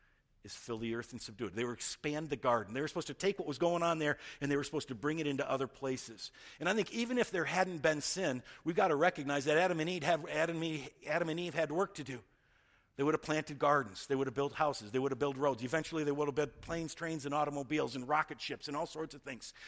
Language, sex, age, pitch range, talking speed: English, male, 50-69, 135-180 Hz, 260 wpm